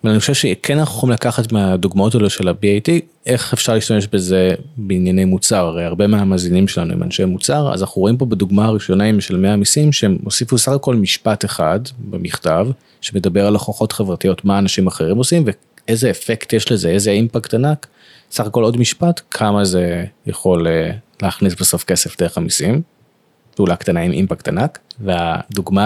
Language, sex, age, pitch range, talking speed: Hebrew, male, 30-49, 95-115 Hz, 170 wpm